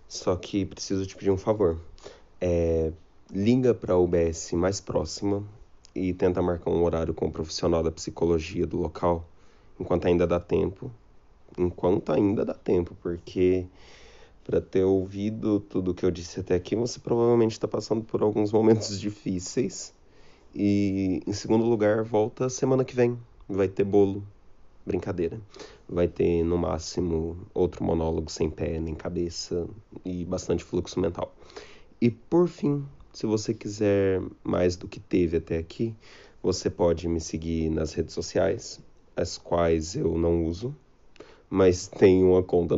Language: Portuguese